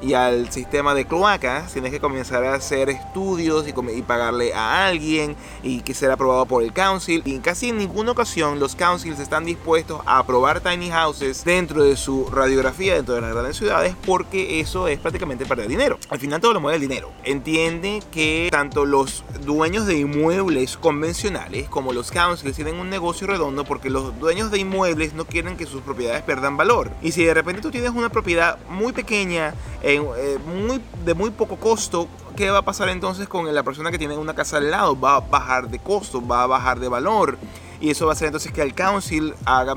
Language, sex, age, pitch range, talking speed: Spanish, male, 30-49, 135-180 Hz, 205 wpm